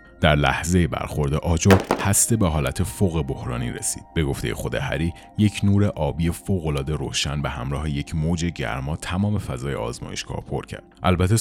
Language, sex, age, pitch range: Persian, male, 30-49, 75-95 Hz